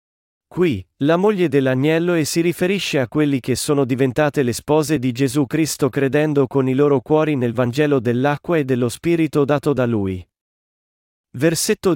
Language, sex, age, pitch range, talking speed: Italian, male, 40-59, 125-165 Hz, 160 wpm